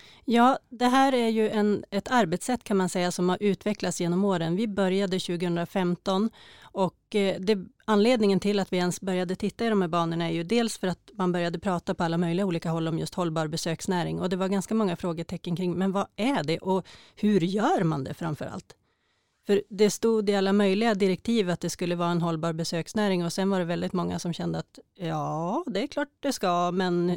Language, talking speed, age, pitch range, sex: Swedish, 210 wpm, 30-49, 175-205 Hz, female